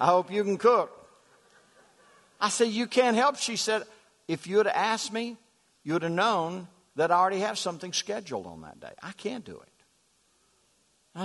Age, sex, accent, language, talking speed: 60-79, male, American, English, 185 wpm